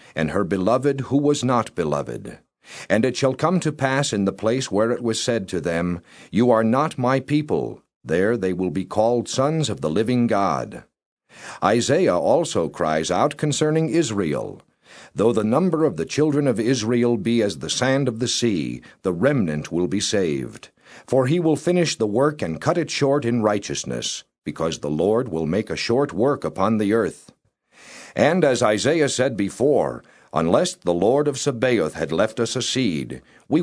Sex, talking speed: male, 180 wpm